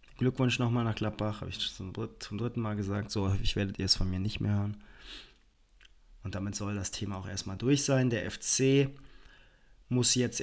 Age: 20-39